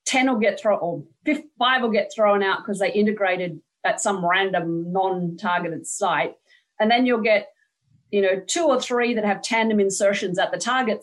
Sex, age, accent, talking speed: female, 40-59, Australian, 185 wpm